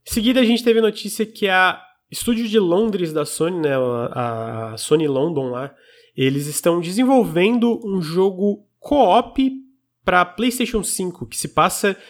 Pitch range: 145-185 Hz